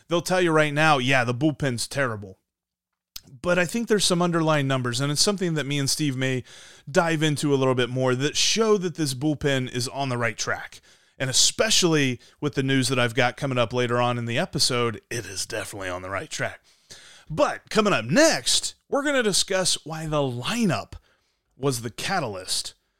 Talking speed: 200 wpm